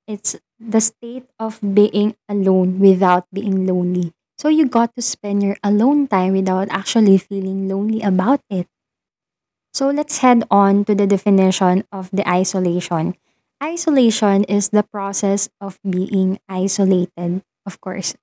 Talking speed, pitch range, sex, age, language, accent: 140 wpm, 195-220 Hz, female, 20-39, Filipino, native